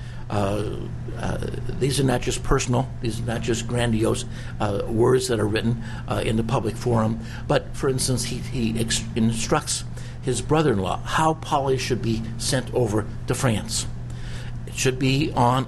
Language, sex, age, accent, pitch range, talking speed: English, male, 60-79, American, 115-130 Hz, 160 wpm